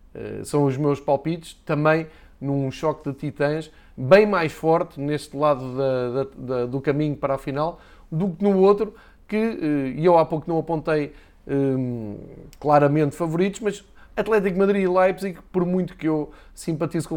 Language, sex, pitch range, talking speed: Portuguese, male, 140-170 Hz, 140 wpm